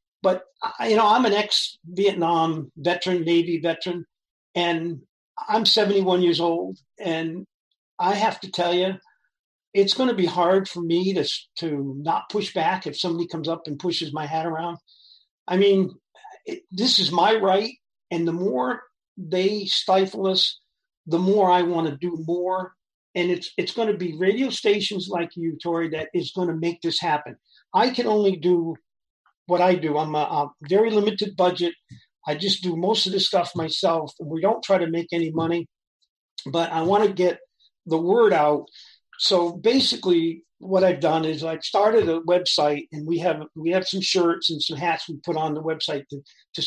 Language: English